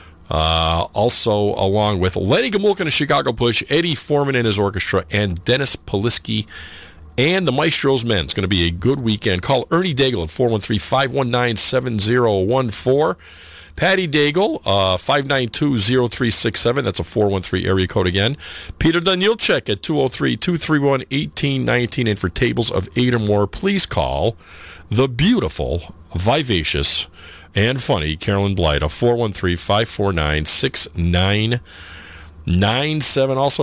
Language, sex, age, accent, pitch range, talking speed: English, male, 50-69, American, 85-125 Hz, 120 wpm